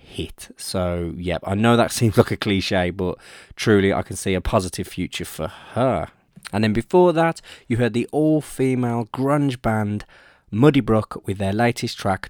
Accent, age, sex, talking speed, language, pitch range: British, 20-39, male, 175 wpm, English, 95-115 Hz